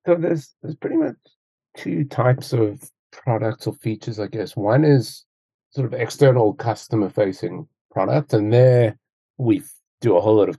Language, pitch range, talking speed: English, 100-135 Hz, 160 wpm